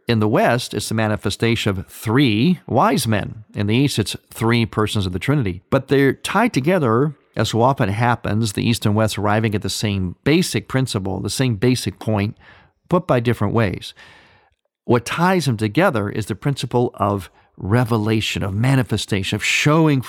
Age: 50-69